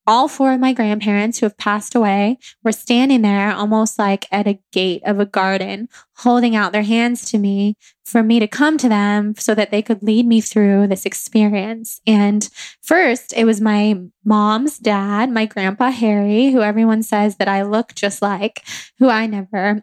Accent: American